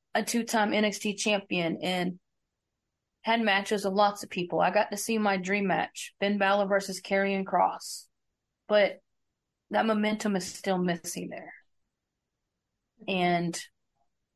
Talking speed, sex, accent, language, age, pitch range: 130 wpm, female, American, English, 30-49, 175-210 Hz